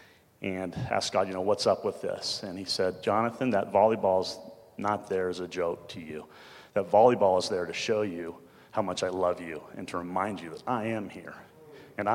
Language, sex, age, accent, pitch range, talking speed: English, male, 30-49, American, 90-110 Hz, 215 wpm